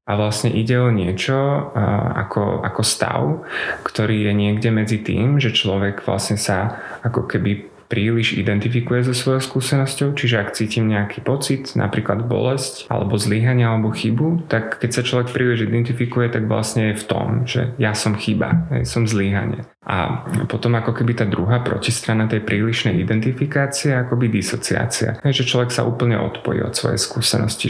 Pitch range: 105-120 Hz